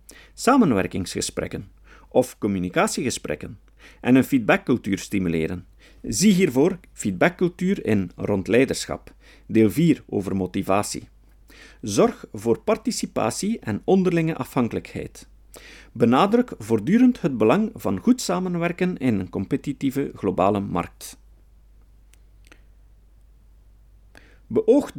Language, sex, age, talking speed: Dutch, male, 50-69, 85 wpm